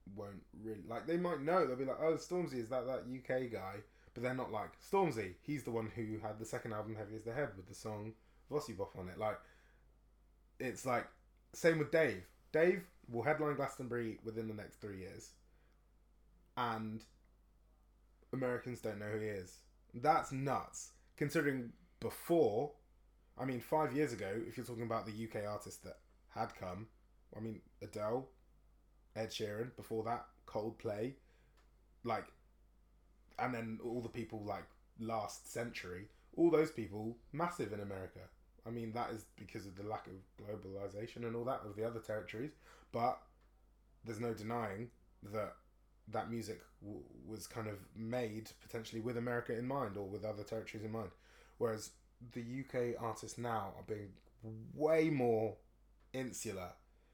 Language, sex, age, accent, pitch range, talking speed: English, male, 20-39, British, 105-125 Hz, 160 wpm